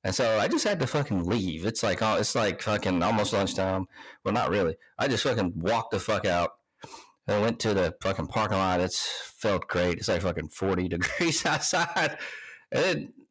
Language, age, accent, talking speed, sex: English, 40-59, American, 190 wpm, male